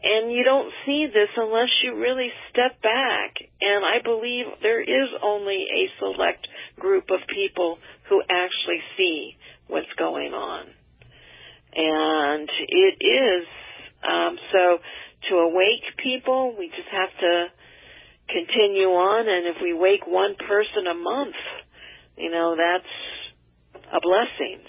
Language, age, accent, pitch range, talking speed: English, 50-69, American, 170-255 Hz, 130 wpm